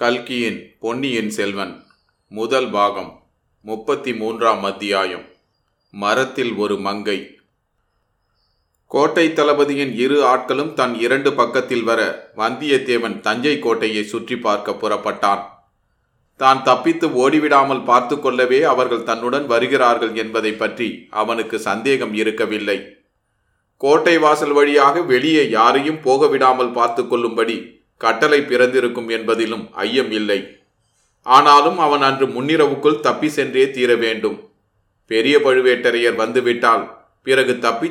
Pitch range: 110-140 Hz